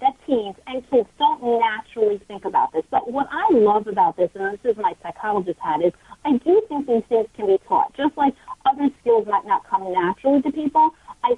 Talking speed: 215 wpm